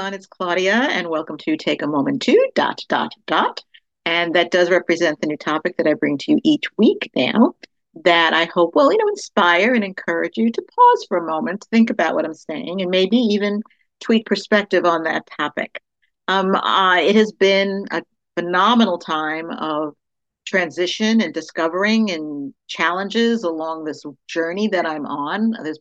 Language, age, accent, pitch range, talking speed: English, 50-69, American, 160-210 Hz, 175 wpm